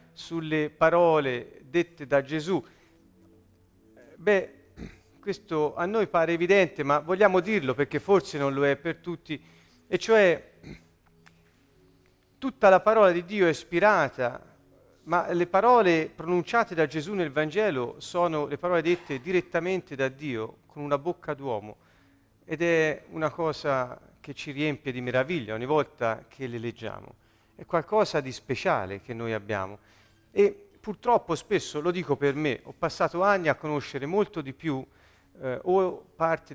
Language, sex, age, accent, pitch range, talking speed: Italian, male, 40-59, native, 110-170 Hz, 145 wpm